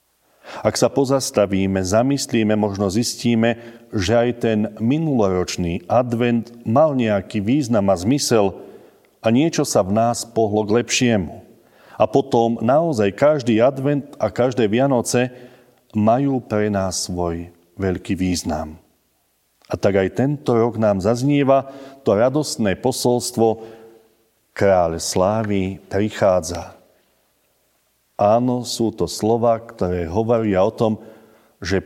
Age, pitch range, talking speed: 40-59, 95-120 Hz, 115 wpm